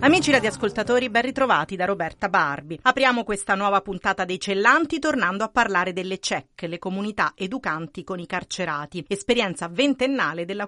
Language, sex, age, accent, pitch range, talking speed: Italian, female, 40-59, native, 170-235 Hz, 150 wpm